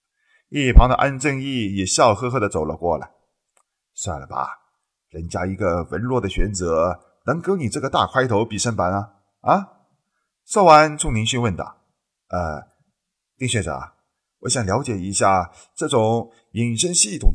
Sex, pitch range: male, 90-135 Hz